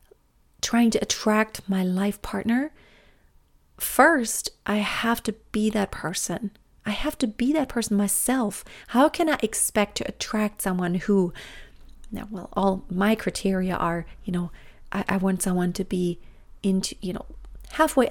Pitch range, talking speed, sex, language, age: 190-235 Hz, 150 wpm, female, English, 30-49